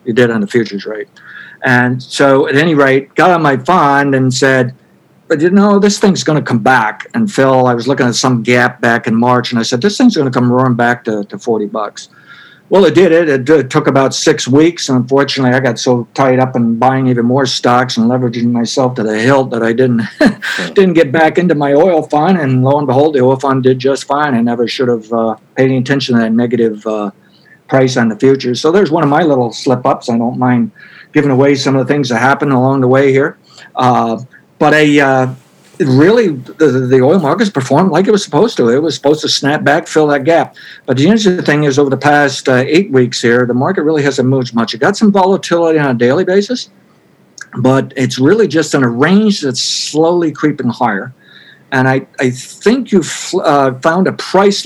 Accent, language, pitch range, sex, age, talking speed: American, English, 125-155 Hz, male, 60-79, 230 wpm